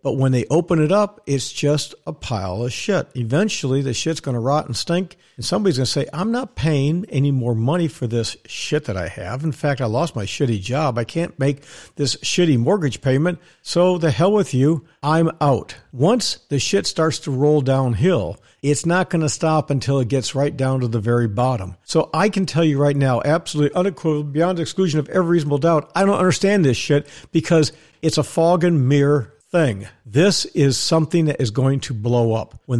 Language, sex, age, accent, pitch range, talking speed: English, male, 50-69, American, 125-170 Hz, 210 wpm